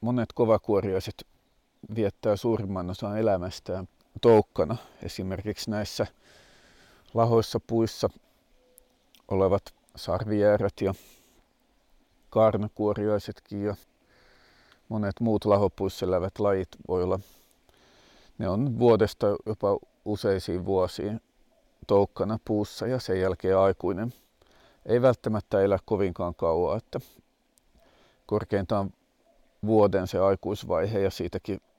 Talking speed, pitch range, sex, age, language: 90 wpm, 95-110 Hz, male, 50-69, Finnish